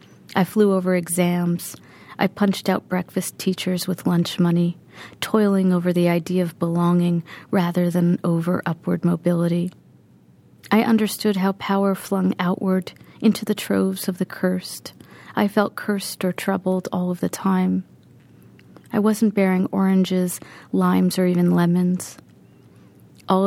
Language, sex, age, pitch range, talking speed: English, female, 40-59, 175-195 Hz, 135 wpm